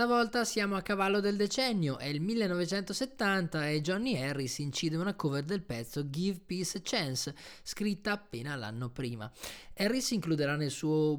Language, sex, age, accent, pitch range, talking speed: Italian, male, 20-39, native, 130-175 Hz, 150 wpm